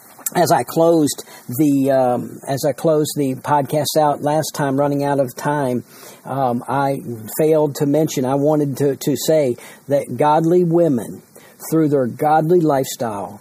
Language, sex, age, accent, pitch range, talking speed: English, male, 50-69, American, 130-155 Hz, 150 wpm